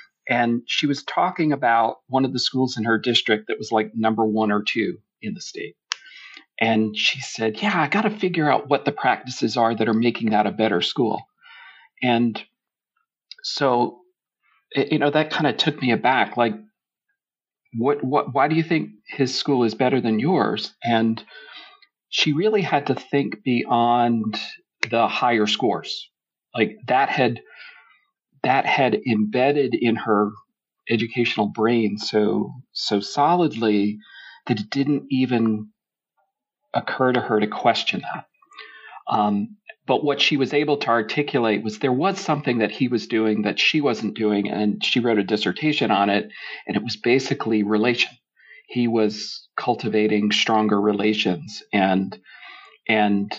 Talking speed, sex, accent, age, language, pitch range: 155 wpm, male, American, 40-59, English, 110-145 Hz